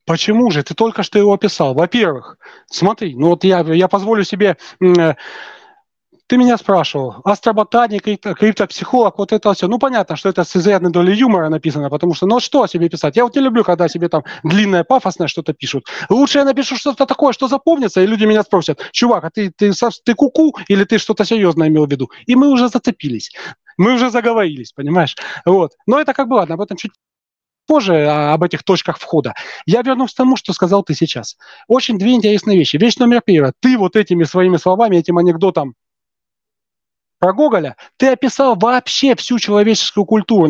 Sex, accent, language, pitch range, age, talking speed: male, native, Russian, 175-240 Hz, 30-49, 185 wpm